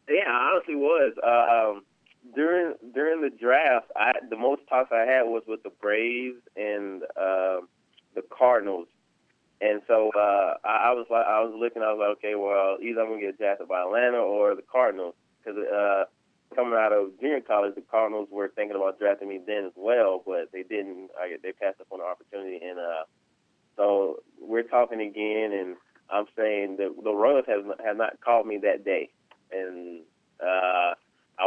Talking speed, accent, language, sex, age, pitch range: 185 wpm, American, English, male, 20-39, 95-110 Hz